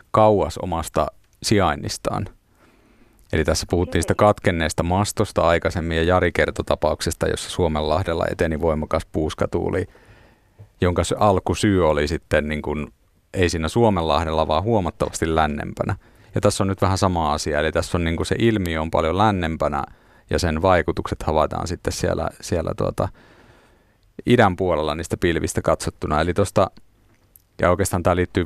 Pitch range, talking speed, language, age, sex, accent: 80-100 Hz, 135 wpm, Finnish, 30-49, male, native